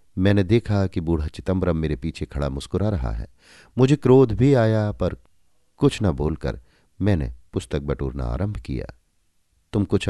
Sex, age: male, 50-69